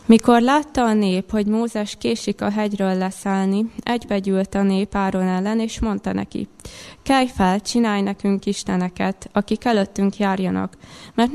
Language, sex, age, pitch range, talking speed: Hungarian, female, 20-39, 190-220 Hz, 145 wpm